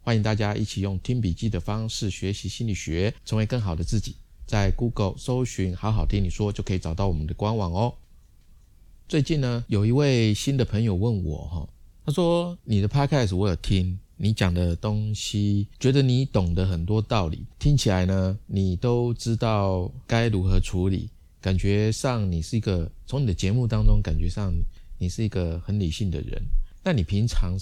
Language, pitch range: Chinese, 90-110 Hz